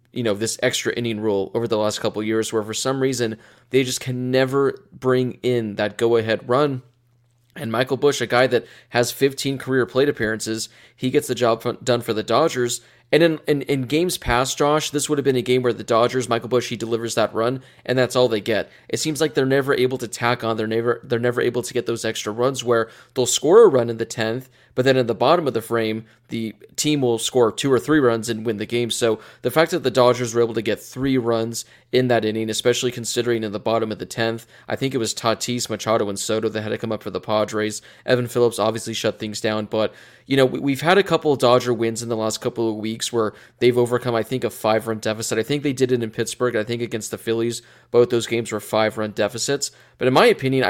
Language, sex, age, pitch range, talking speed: English, male, 20-39, 115-130 Hz, 245 wpm